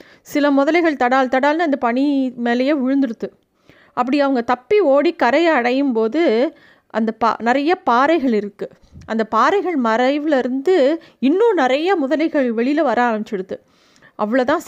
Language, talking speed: Tamil, 125 wpm